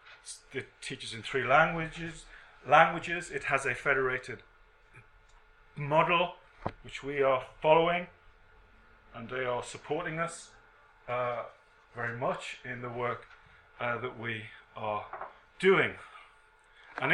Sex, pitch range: male, 110-145 Hz